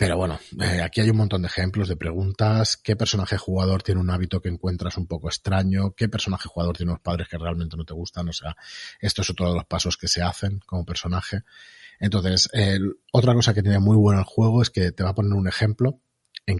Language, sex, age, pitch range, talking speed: Spanish, male, 30-49, 85-110 Hz, 230 wpm